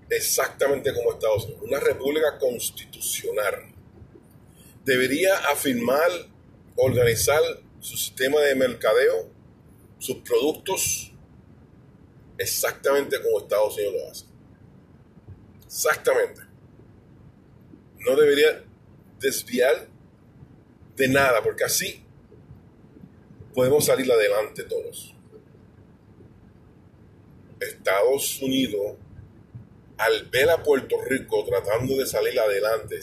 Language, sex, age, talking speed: English, male, 30-49, 80 wpm